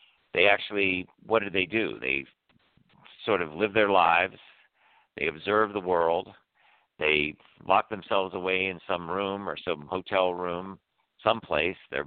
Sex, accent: male, American